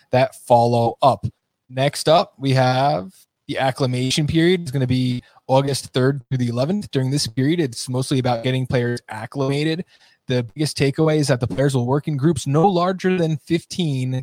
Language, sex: English, male